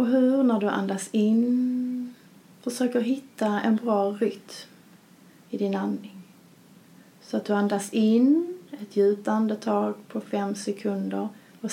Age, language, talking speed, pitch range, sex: 30-49, Swedish, 140 wpm, 205-245 Hz, female